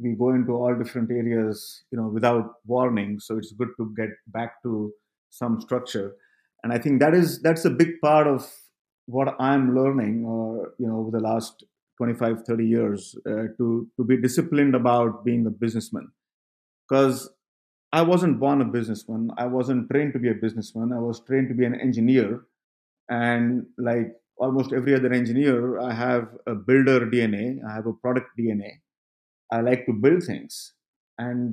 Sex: male